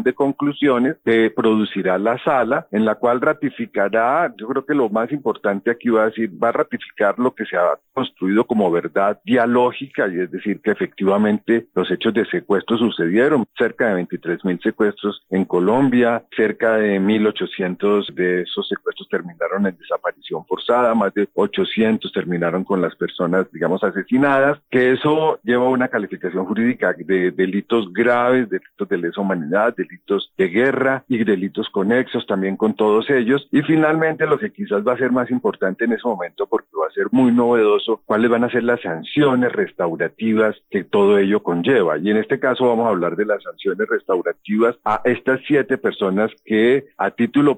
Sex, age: male, 50-69